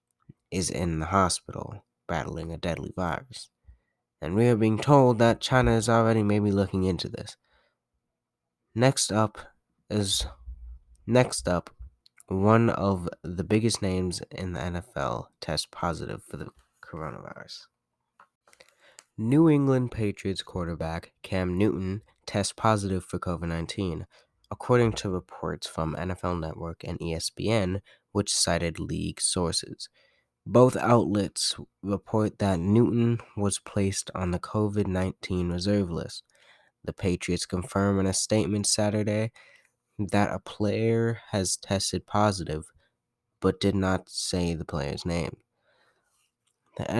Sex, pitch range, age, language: male, 90-110 Hz, 20-39, English